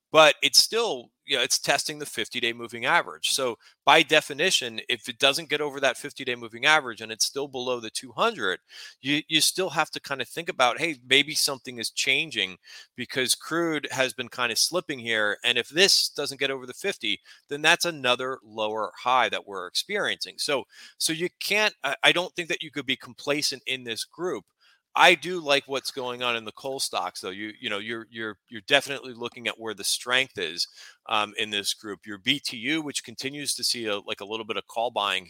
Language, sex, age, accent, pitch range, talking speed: English, male, 30-49, American, 110-145 Hz, 215 wpm